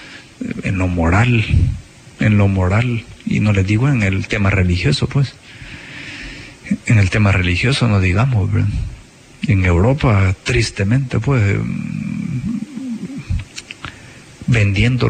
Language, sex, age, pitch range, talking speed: Spanish, male, 50-69, 100-125 Hz, 105 wpm